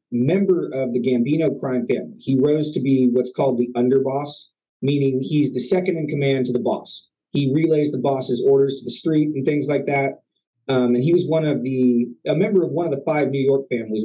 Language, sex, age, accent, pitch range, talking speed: English, male, 30-49, American, 130-155 Hz, 220 wpm